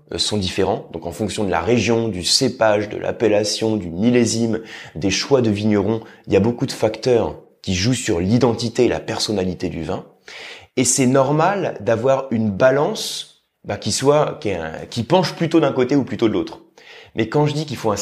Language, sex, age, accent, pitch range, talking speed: French, male, 20-39, French, 105-150 Hz, 200 wpm